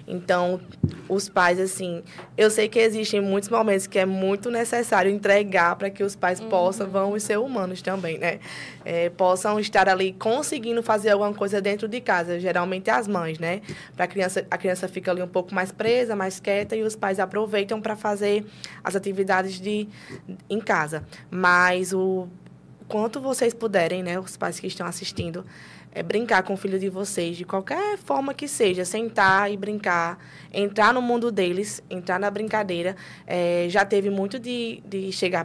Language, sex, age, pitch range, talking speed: Portuguese, female, 20-39, 185-220 Hz, 175 wpm